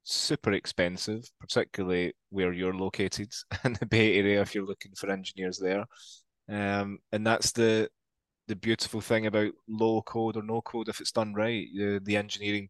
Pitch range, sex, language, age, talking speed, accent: 95-110 Hz, male, English, 20-39, 170 wpm, British